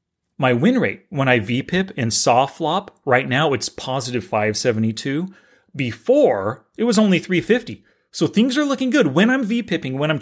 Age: 30-49